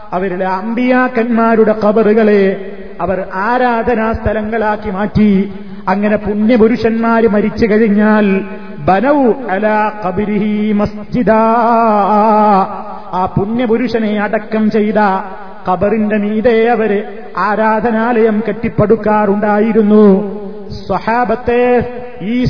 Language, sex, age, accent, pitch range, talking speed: Malayalam, male, 30-49, native, 210-230 Hz, 60 wpm